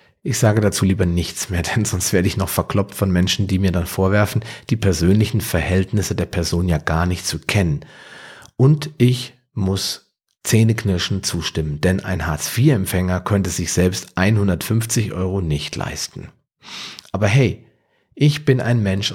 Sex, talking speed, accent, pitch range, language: male, 155 wpm, German, 90-115 Hz, German